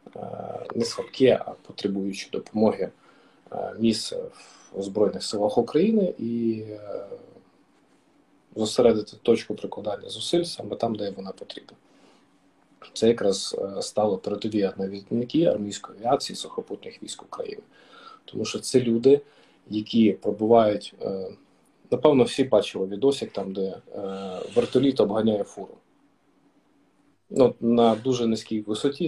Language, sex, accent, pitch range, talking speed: Ukrainian, male, native, 110-145 Hz, 105 wpm